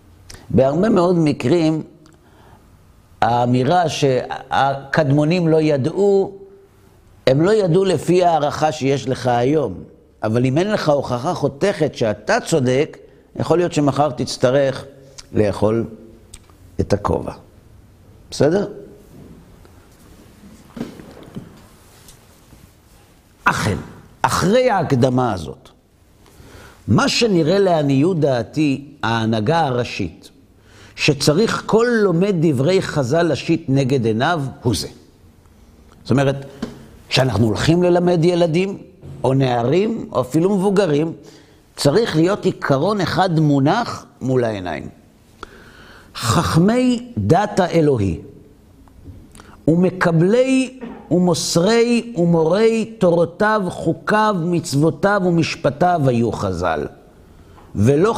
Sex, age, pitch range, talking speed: male, 50-69, 110-175 Hz, 85 wpm